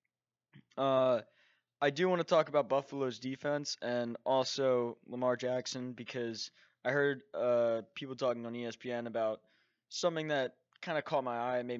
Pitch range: 120-145 Hz